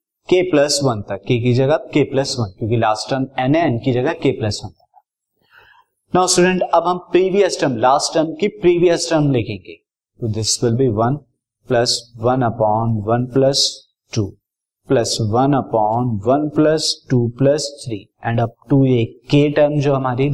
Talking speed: 80 wpm